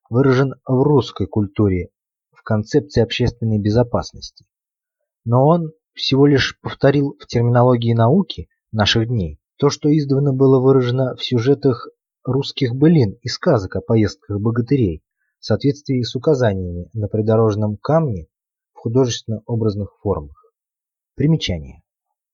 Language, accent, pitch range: Russian, native, 105-135 Hz